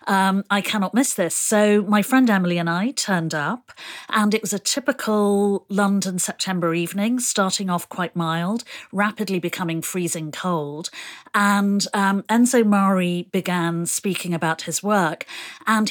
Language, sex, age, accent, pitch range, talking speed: English, female, 40-59, British, 170-215 Hz, 145 wpm